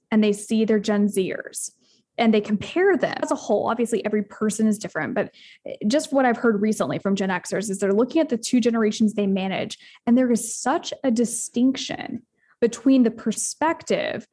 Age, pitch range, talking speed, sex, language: 10-29, 210-255 Hz, 185 wpm, female, English